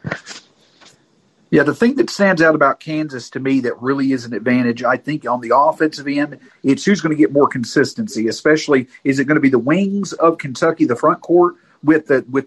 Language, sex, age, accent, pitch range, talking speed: English, male, 40-59, American, 140-185 Hz, 210 wpm